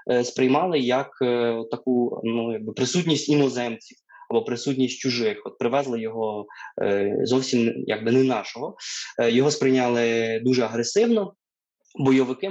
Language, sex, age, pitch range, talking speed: Ukrainian, male, 20-39, 115-140 Hz, 120 wpm